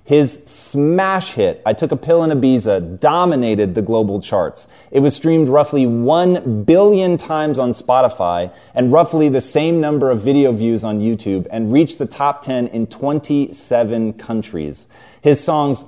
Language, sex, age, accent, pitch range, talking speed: English, male, 30-49, American, 110-150 Hz, 160 wpm